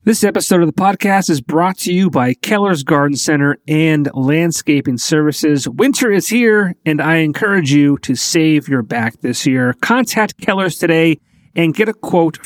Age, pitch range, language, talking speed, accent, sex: 40-59, 135-170 Hz, English, 175 wpm, American, male